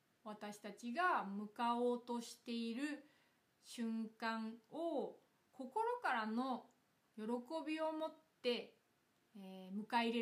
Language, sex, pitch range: Japanese, female, 205-255 Hz